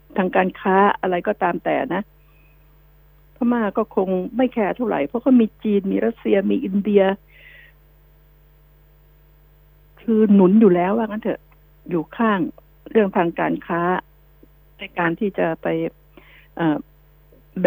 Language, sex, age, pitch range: Thai, female, 60-79, 150-205 Hz